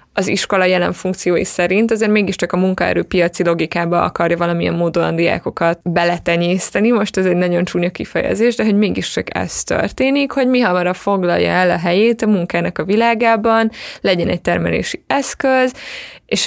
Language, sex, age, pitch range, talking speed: Hungarian, female, 20-39, 180-225 Hz, 155 wpm